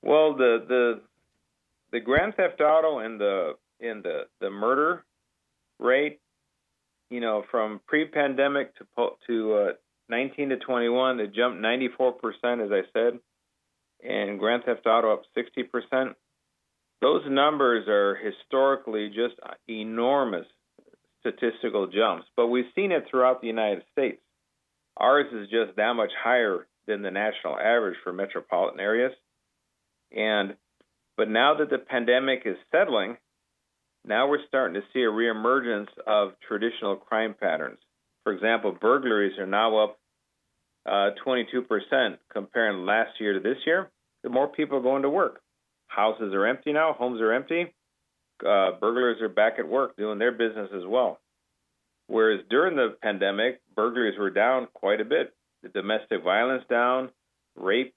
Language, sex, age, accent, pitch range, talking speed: English, male, 50-69, American, 110-135 Hz, 145 wpm